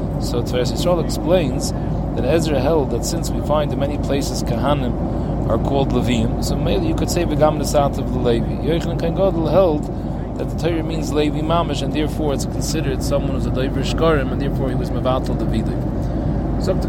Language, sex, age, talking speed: English, male, 30-49, 185 wpm